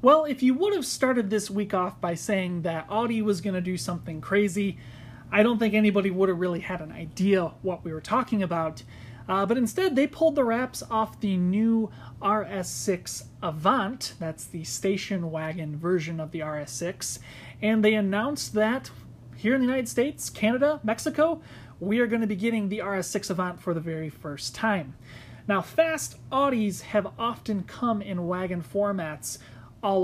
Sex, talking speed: male, 170 wpm